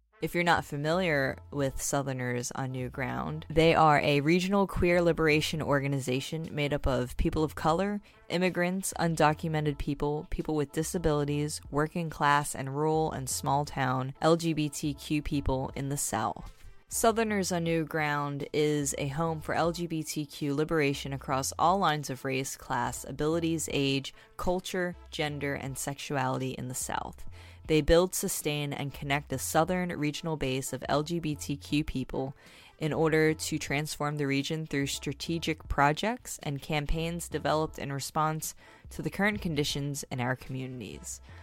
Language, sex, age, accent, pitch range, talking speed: English, female, 10-29, American, 135-165 Hz, 140 wpm